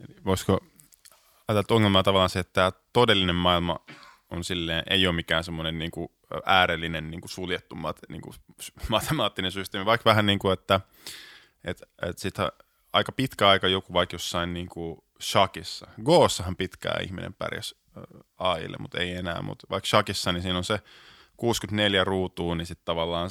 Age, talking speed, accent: 20-39, 150 wpm, native